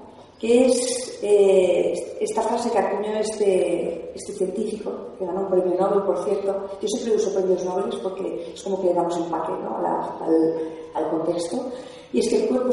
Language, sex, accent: Spanish, female, Spanish